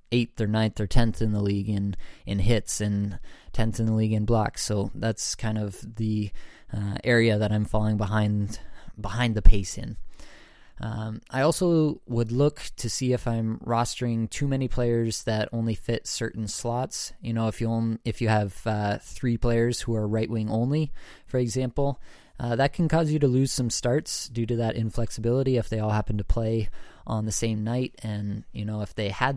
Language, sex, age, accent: English, male, 20-39, American